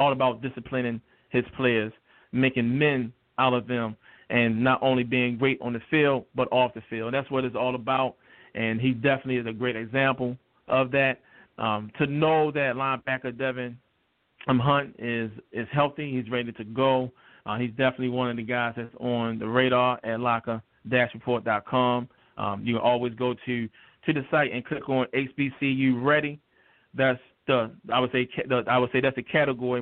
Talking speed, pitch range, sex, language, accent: 175 wpm, 120-135 Hz, male, English, American